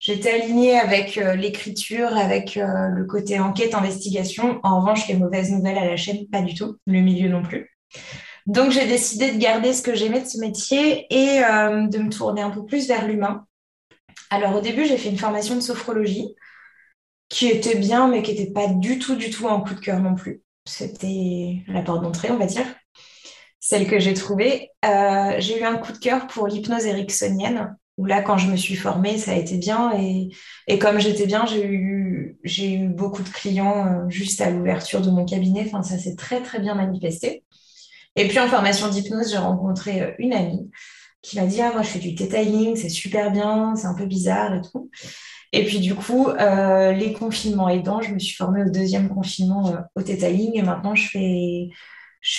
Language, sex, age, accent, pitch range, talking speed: French, female, 20-39, French, 190-225 Hz, 200 wpm